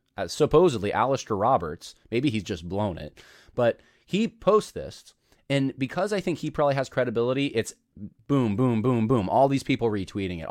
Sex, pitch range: male, 105-135 Hz